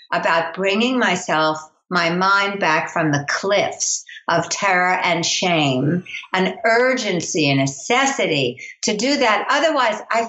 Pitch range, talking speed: 165-225 Hz, 130 wpm